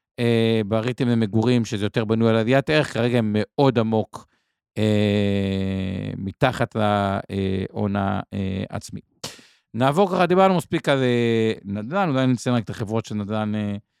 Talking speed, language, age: 135 wpm, Hebrew, 50-69